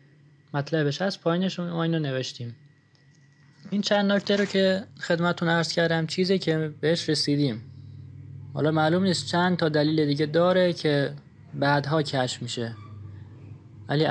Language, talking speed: Persian, 130 wpm